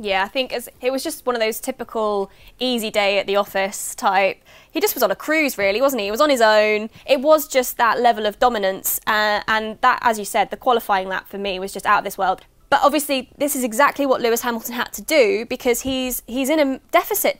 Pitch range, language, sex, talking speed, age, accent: 215-280 Hz, English, female, 245 wpm, 20-39, British